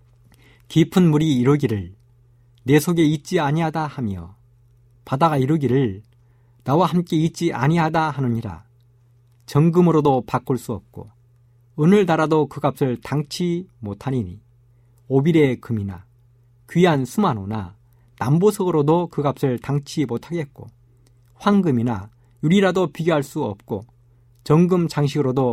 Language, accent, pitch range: Korean, native, 120-160 Hz